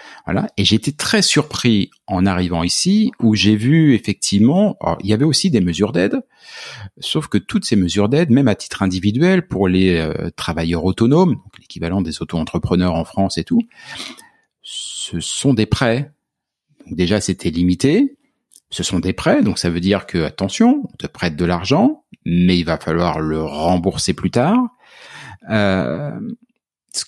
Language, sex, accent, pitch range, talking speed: French, male, French, 95-145 Hz, 165 wpm